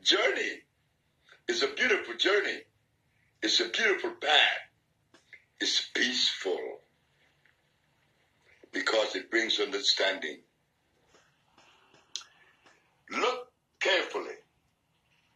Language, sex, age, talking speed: English, male, 60-79, 65 wpm